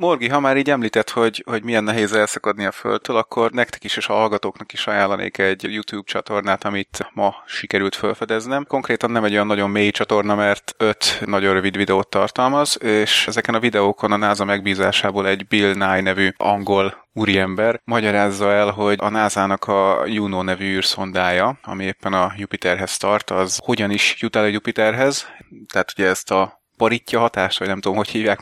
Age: 20-39